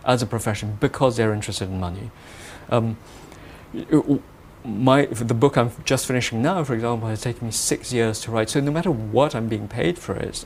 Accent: British